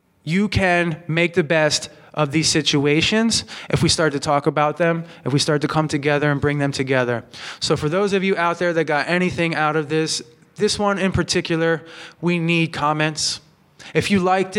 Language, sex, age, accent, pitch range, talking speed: English, male, 20-39, American, 140-170 Hz, 200 wpm